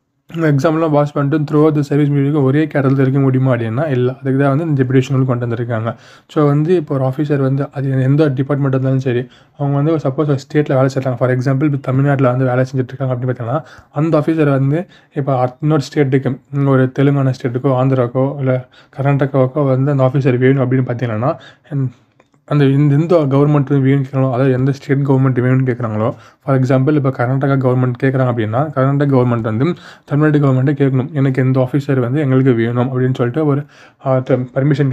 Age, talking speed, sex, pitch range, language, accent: 20-39, 170 wpm, male, 130-145 Hz, Tamil, native